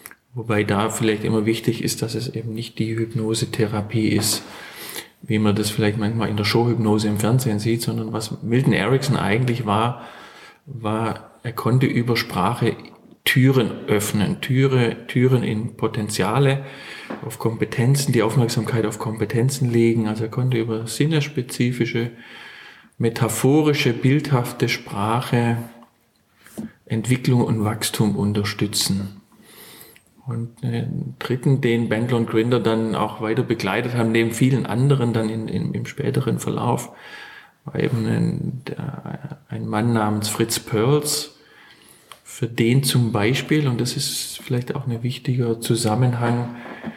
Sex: male